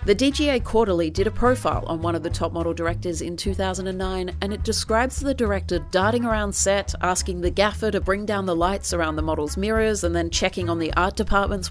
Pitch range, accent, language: 165-220 Hz, Australian, English